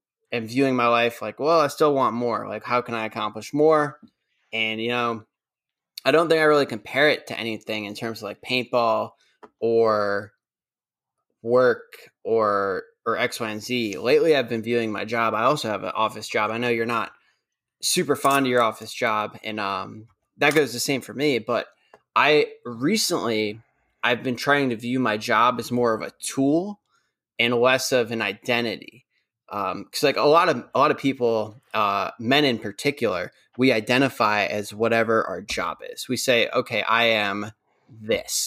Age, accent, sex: 20-39, American, male